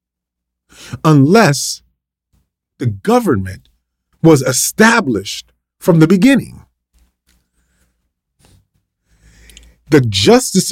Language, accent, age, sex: English, American, 40-59, male